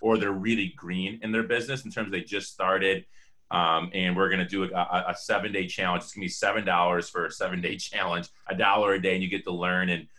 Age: 30-49